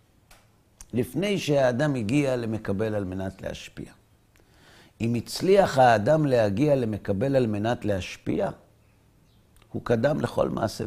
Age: 50-69